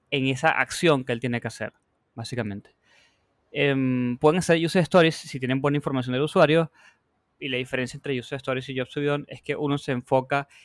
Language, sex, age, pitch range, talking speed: Spanish, male, 20-39, 125-150 Hz, 190 wpm